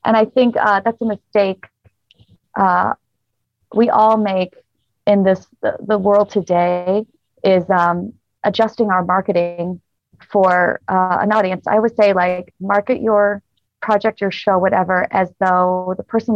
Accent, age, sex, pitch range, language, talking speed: American, 30-49, female, 180-215 Hz, English, 145 wpm